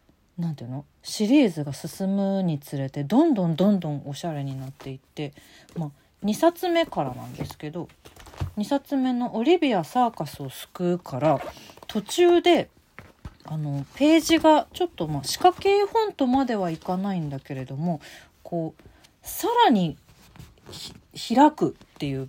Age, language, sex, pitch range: 40-59, Japanese, female, 140-220 Hz